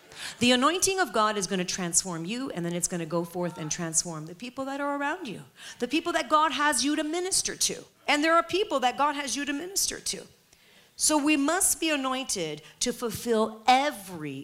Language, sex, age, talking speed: English, female, 40-59, 215 wpm